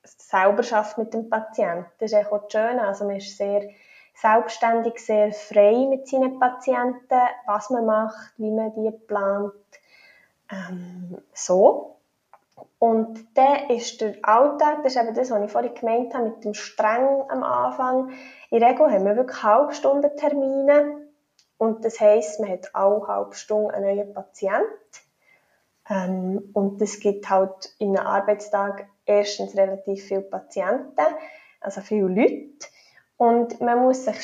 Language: German